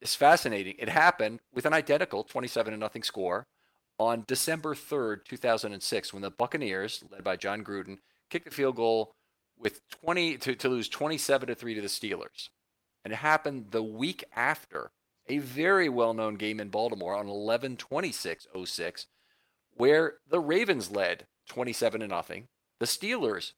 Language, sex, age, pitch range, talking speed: English, male, 40-59, 105-125 Hz, 135 wpm